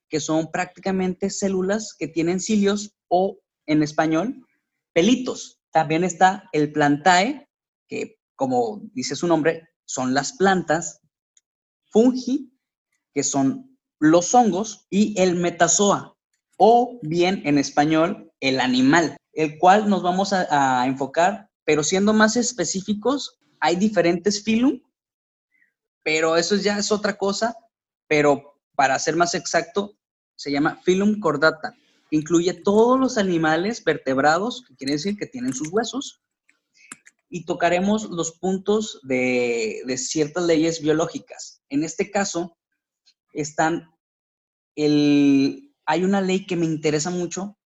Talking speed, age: 125 wpm, 20-39